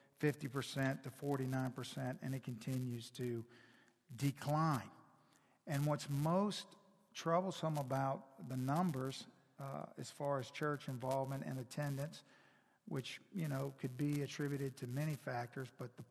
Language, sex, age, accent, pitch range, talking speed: English, male, 50-69, American, 130-160 Hz, 125 wpm